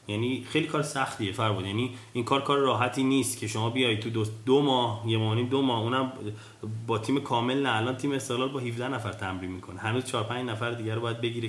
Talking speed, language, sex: 210 wpm, Persian, male